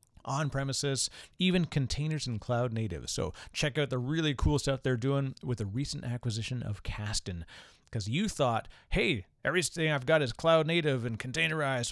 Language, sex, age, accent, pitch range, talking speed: English, male, 30-49, American, 110-140 Hz, 170 wpm